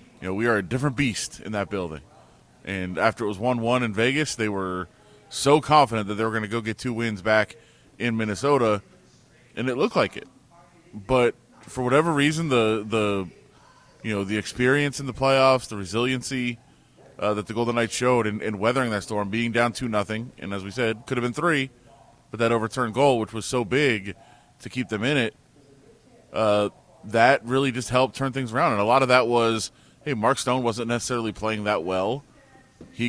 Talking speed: 205 wpm